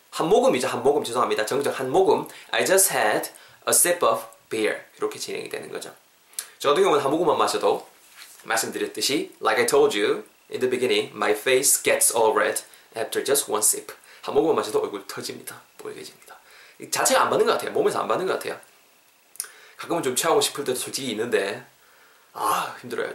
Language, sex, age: Korean, male, 20-39